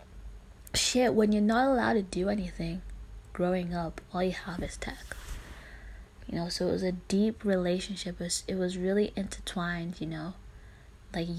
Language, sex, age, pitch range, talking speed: English, female, 20-39, 170-195 Hz, 170 wpm